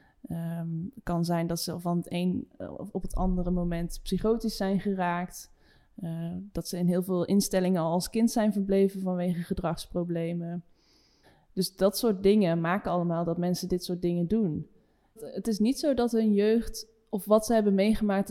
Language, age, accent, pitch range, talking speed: Dutch, 20-39, Dutch, 175-215 Hz, 175 wpm